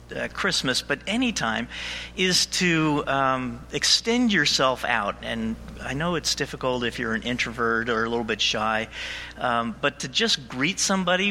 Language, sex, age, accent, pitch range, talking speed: English, male, 50-69, American, 115-165 Hz, 165 wpm